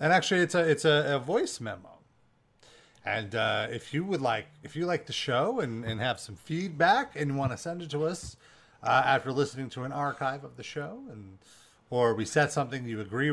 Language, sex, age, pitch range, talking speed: English, male, 30-49, 125-170 Hz, 220 wpm